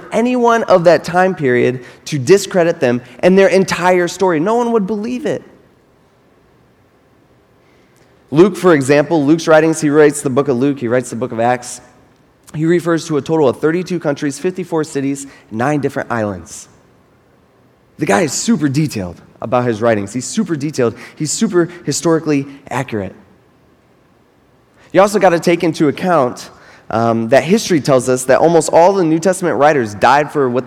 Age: 20-39